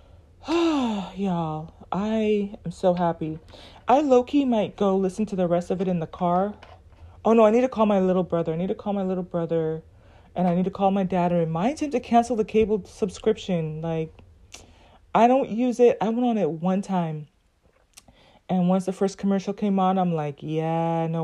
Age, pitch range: 30-49, 170-220 Hz